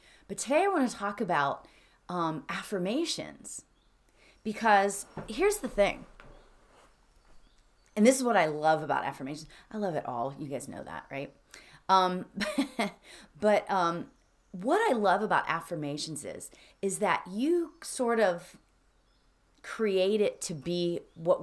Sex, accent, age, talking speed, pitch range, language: female, American, 30-49, 135 wpm, 165-220 Hz, English